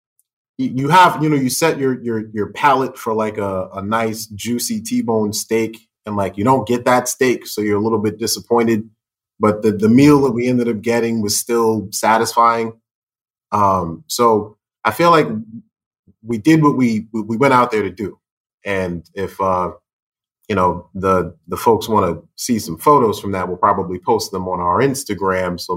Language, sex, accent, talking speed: English, male, American, 185 wpm